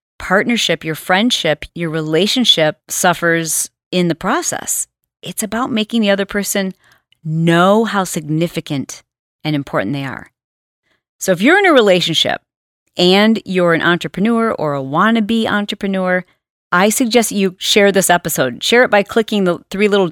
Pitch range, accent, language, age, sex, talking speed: 160-220 Hz, American, English, 40-59, female, 145 wpm